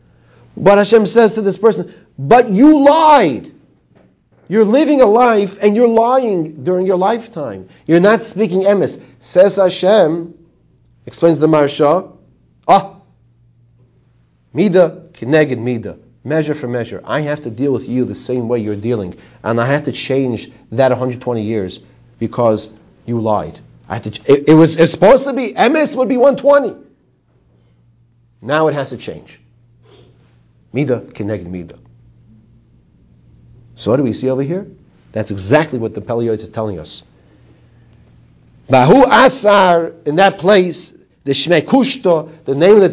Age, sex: 40-59, male